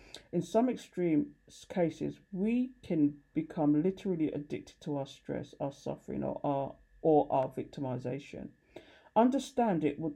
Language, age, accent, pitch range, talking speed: English, 50-69, British, 145-195 Hz, 130 wpm